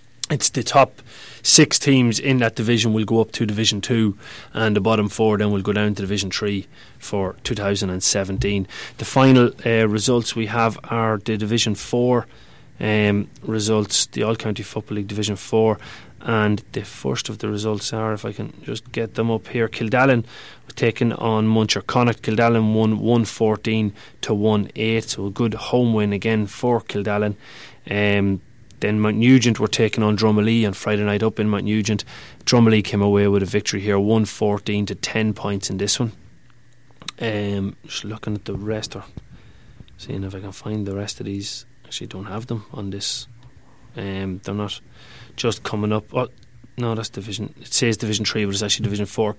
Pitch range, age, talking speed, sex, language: 105-120 Hz, 30-49, 180 wpm, male, English